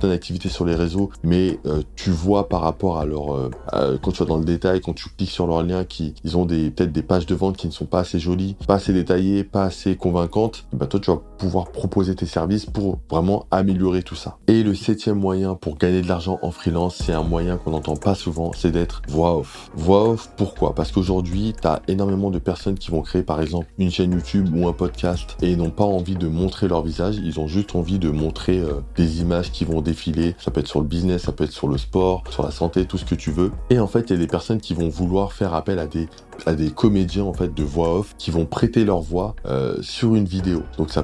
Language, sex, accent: French, male, French